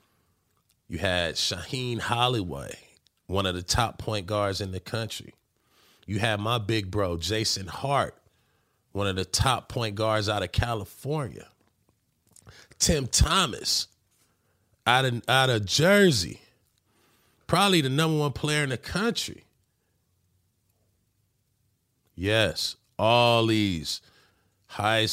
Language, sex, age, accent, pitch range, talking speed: English, male, 40-59, American, 95-125 Hz, 110 wpm